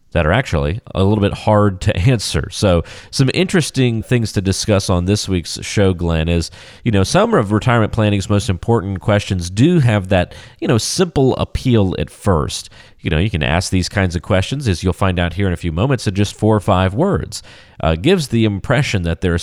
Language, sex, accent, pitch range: English, male, American, 90-115 Hz